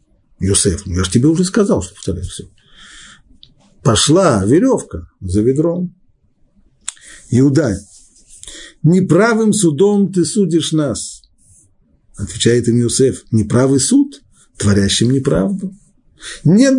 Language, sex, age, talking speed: Russian, male, 50-69, 100 wpm